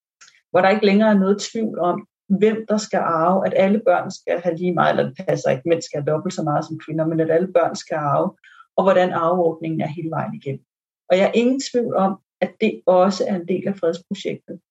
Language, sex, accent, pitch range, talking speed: Danish, female, native, 175-205 Hz, 235 wpm